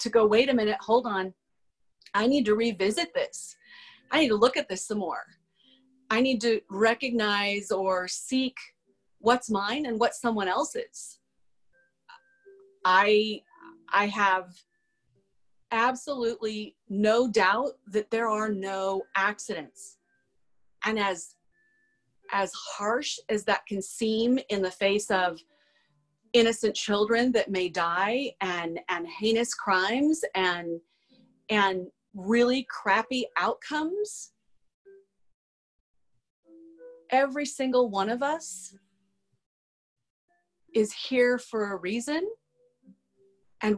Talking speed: 110 wpm